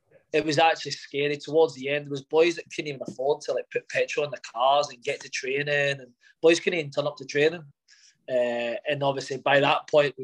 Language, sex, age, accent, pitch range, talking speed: English, male, 20-39, British, 135-165 Hz, 235 wpm